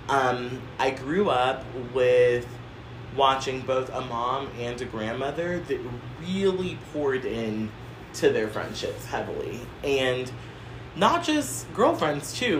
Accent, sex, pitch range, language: American, male, 115-135 Hz, English